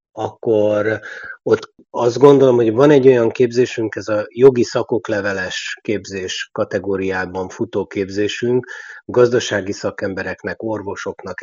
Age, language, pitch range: 30-49, Hungarian, 95-115 Hz